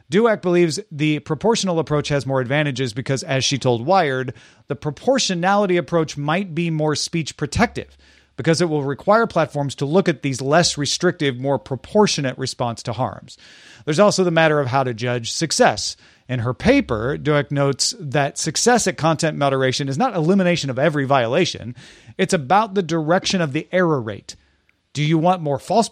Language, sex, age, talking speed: English, male, 40-59, 175 wpm